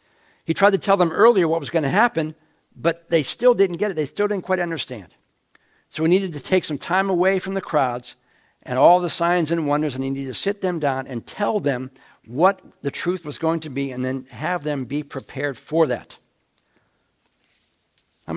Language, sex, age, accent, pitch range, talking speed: English, male, 60-79, American, 125-170 Hz, 210 wpm